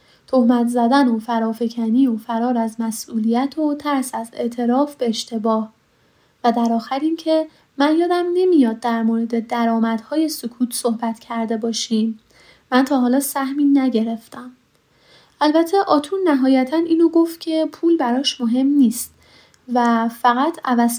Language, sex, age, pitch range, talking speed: Persian, female, 10-29, 235-315 Hz, 135 wpm